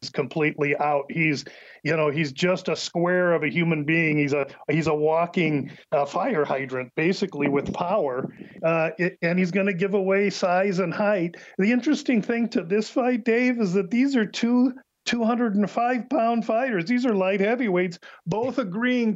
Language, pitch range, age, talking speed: English, 180-220 Hz, 40-59, 175 wpm